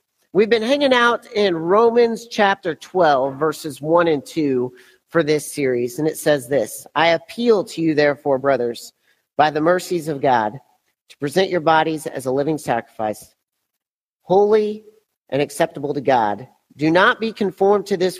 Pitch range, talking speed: 145-200 Hz, 160 wpm